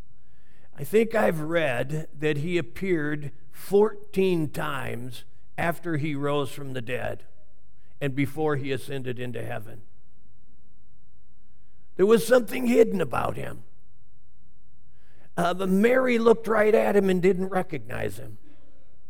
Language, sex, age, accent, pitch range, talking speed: English, male, 50-69, American, 125-210 Hz, 115 wpm